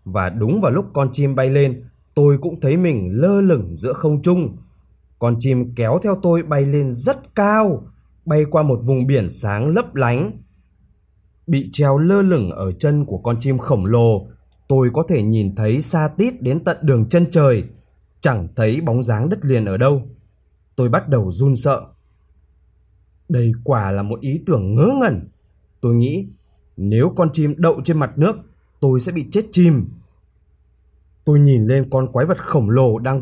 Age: 20-39